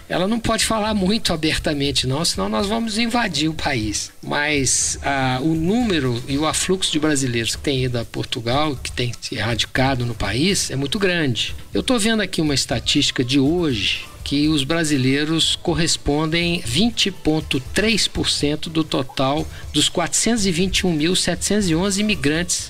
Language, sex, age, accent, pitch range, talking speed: Portuguese, male, 60-79, Brazilian, 130-175 Hz, 145 wpm